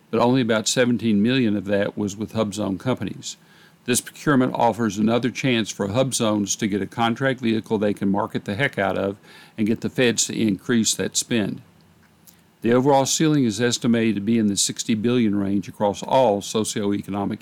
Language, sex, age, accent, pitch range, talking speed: English, male, 60-79, American, 105-125 Hz, 190 wpm